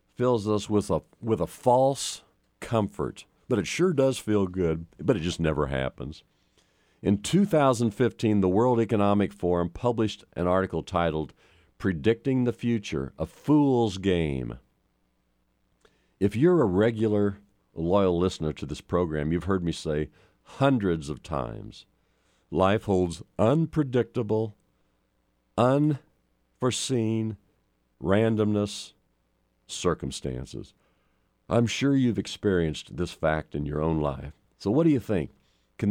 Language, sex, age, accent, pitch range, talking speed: English, male, 50-69, American, 75-115 Hz, 120 wpm